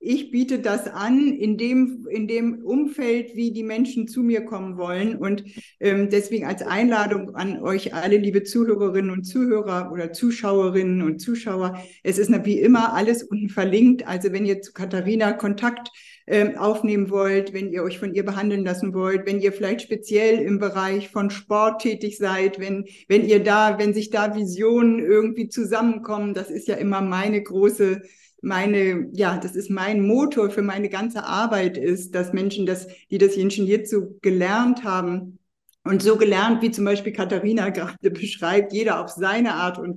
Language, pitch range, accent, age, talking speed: German, 190-220 Hz, German, 50-69, 175 wpm